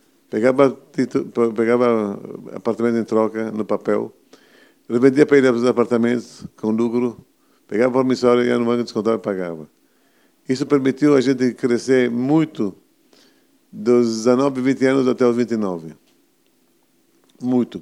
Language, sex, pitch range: Portuguese, male, 110-130 Hz